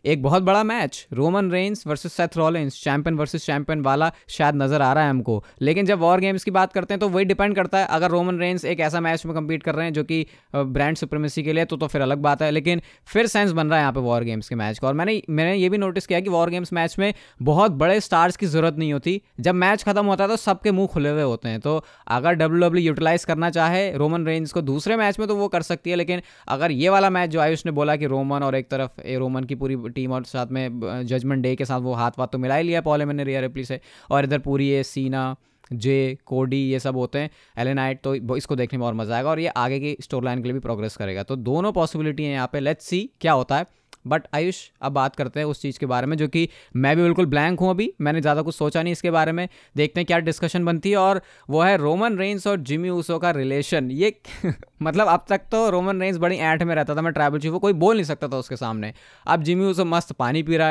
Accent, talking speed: native, 265 wpm